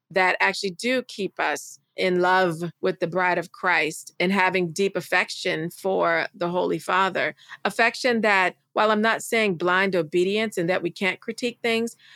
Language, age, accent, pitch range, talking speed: English, 40-59, American, 175-200 Hz, 170 wpm